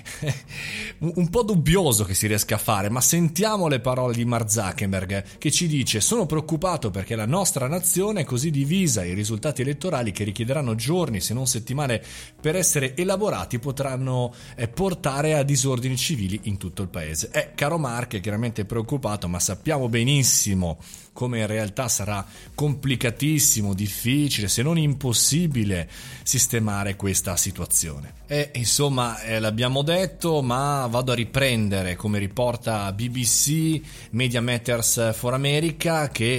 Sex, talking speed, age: male, 145 wpm, 30-49